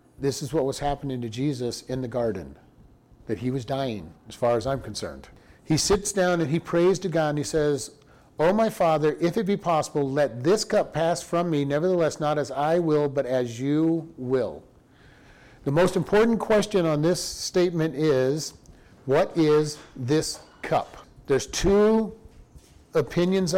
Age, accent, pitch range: 50-69, American, 140-180 Hz